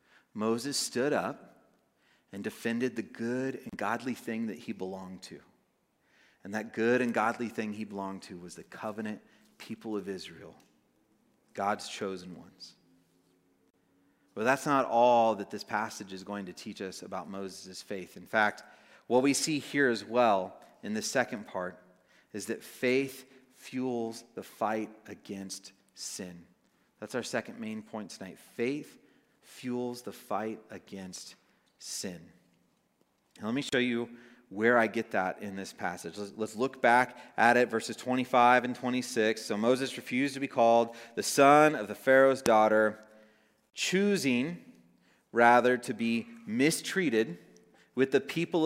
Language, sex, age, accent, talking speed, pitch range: English, male, 30-49, American, 150 wpm, 100-130 Hz